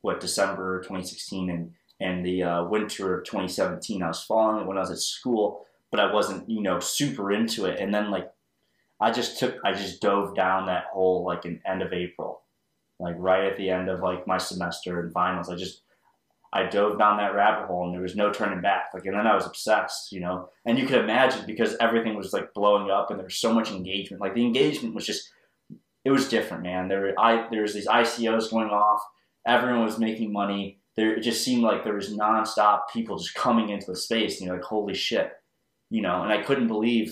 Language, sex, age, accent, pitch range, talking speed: English, male, 20-39, American, 95-110 Hz, 225 wpm